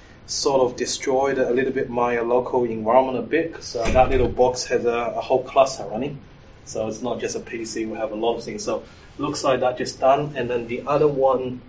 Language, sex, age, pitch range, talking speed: English, male, 20-39, 120-150 Hz, 225 wpm